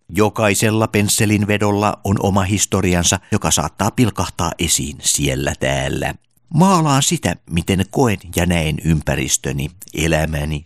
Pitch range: 80-105 Hz